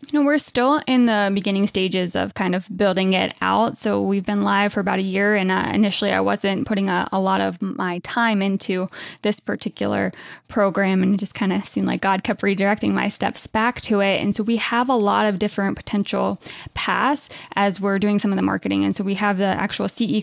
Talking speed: 230 wpm